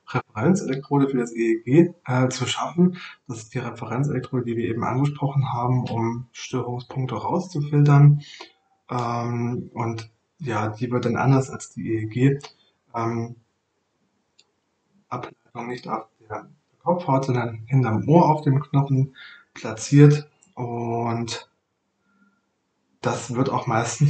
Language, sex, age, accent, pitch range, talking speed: German, male, 20-39, German, 115-140 Hz, 115 wpm